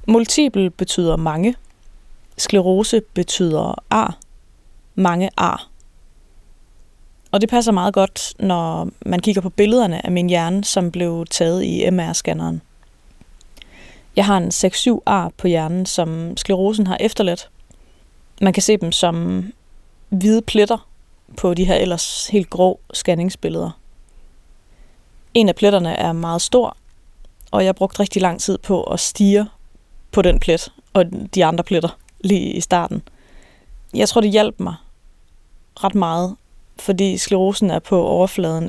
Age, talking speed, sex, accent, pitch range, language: 20-39, 140 wpm, female, native, 170-200 Hz, Danish